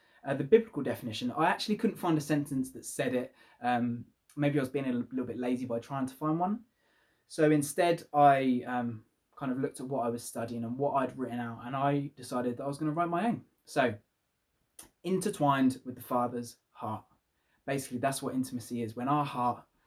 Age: 20-39